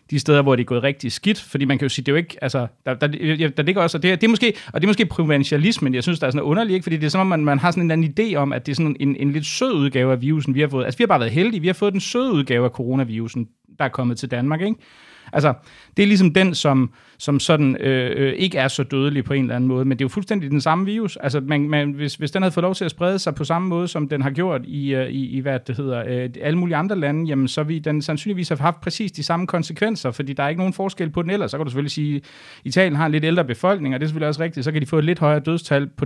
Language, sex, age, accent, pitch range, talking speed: Danish, male, 30-49, native, 130-170 Hz, 305 wpm